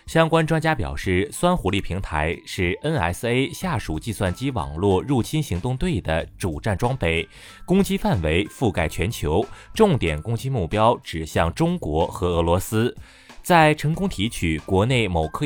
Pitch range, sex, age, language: 85-140 Hz, male, 20-39, Chinese